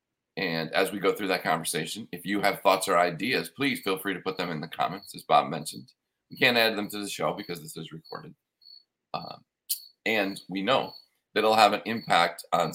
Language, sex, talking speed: English, male, 215 wpm